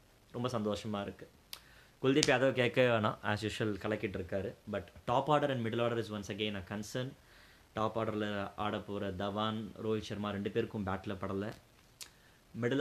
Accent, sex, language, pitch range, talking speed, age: native, male, Tamil, 100-120 Hz, 155 wpm, 20-39